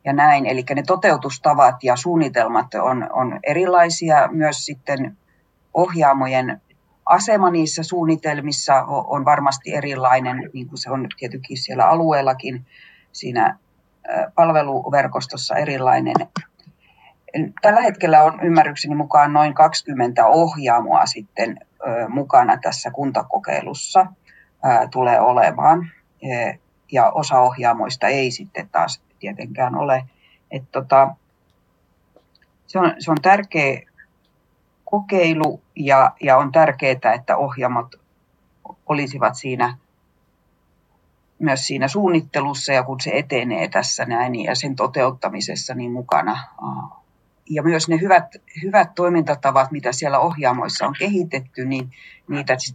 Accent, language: native, Finnish